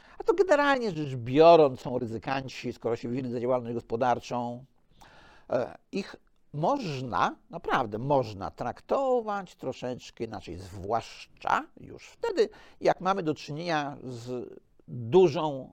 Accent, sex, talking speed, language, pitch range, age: native, male, 110 wpm, Polish, 125-175 Hz, 50-69